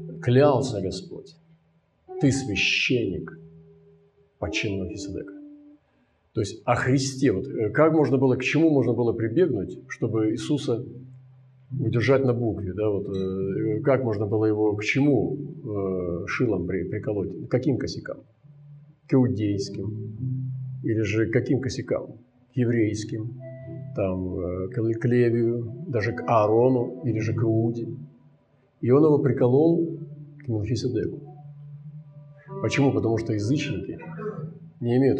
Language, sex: Russian, male